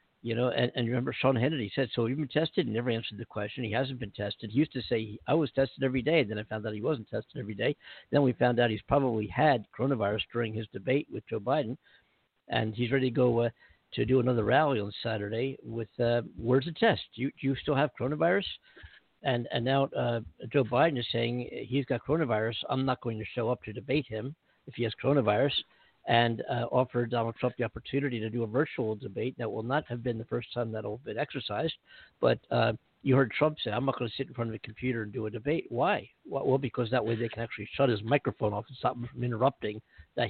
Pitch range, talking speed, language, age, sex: 115-140 Hz, 245 wpm, English, 60-79, male